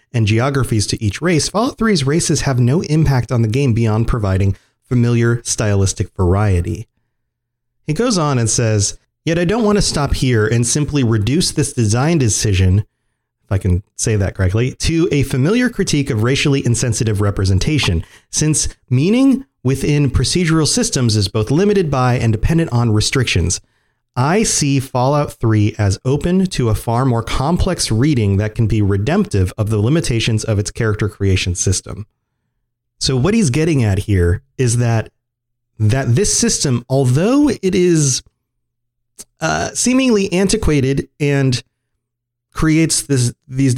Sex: male